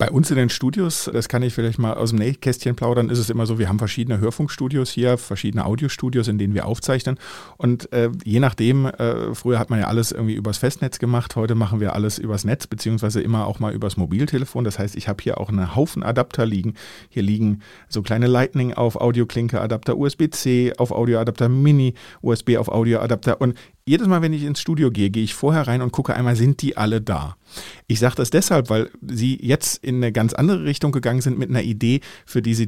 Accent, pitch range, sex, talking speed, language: German, 110-135 Hz, male, 215 wpm, German